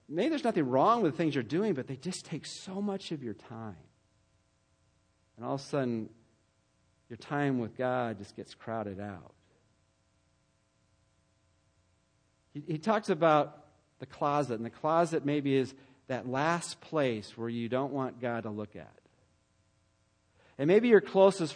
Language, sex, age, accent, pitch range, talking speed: English, male, 40-59, American, 105-160 Hz, 160 wpm